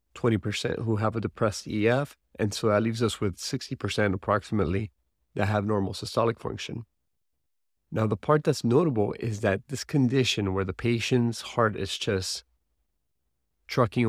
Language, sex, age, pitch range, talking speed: English, male, 30-49, 100-125 Hz, 160 wpm